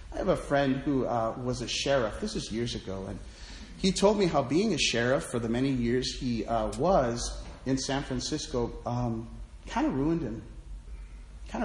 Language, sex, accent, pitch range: English, male, American, 115-160 Hz